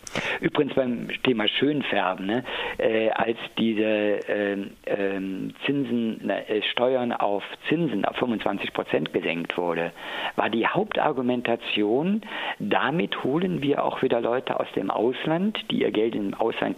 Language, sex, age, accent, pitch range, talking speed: German, male, 50-69, German, 110-145 Hz, 125 wpm